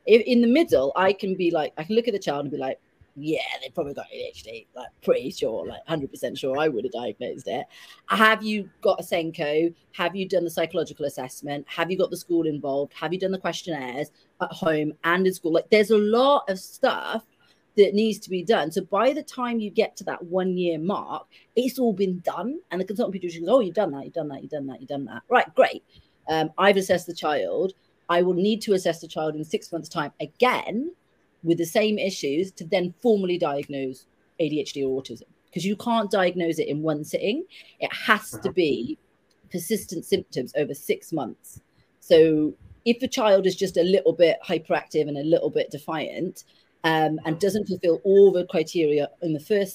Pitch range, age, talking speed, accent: 160-215 Hz, 30-49, 210 wpm, British